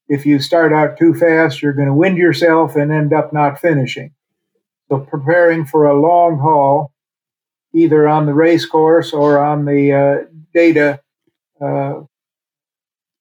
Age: 50-69